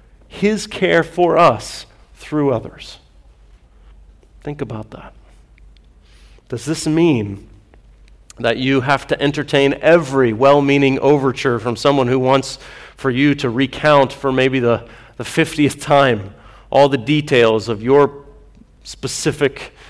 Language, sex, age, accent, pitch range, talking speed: English, male, 40-59, American, 110-150 Hz, 120 wpm